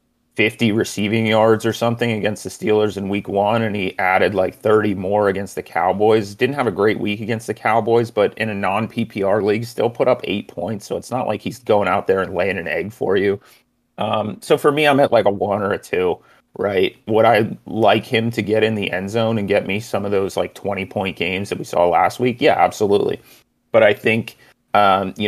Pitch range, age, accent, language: 100-115 Hz, 30-49, American, English